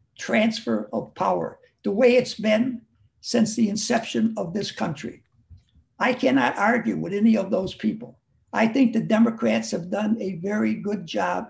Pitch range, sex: 190-240 Hz, male